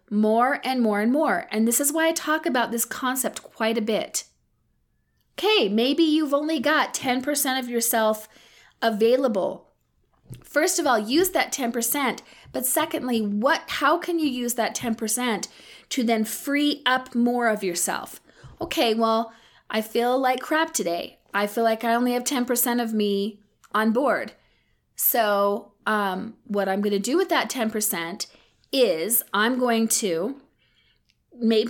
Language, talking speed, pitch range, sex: English, 155 wpm, 215-275 Hz, female